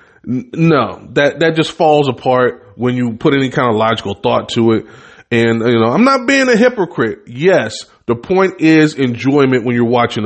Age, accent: 20-39, American